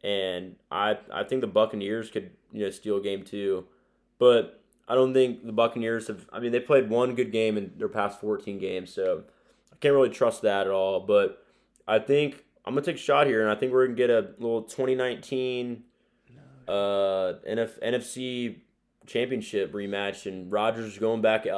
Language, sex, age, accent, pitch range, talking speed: English, male, 20-39, American, 100-125 Hz, 190 wpm